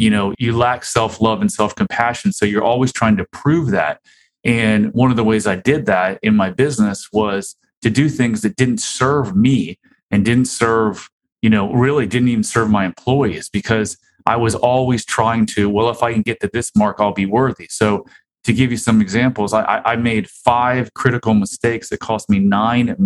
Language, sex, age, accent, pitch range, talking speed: English, male, 30-49, American, 105-125 Hz, 205 wpm